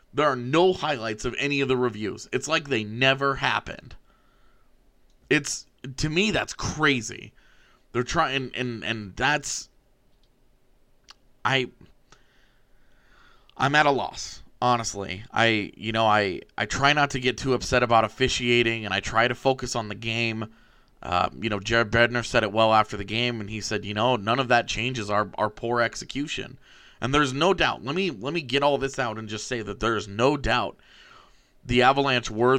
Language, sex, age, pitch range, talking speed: English, male, 30-49, 110-135 Hz, 180 wpm